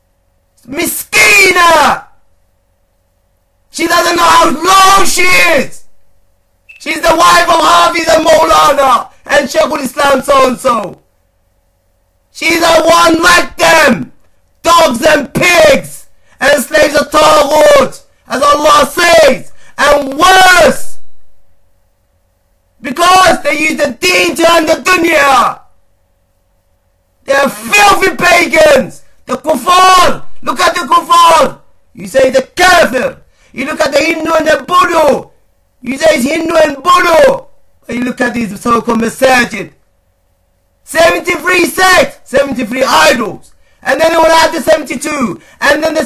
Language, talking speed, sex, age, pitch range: English, 125 wpm, male, 30-49, 235-330 Hz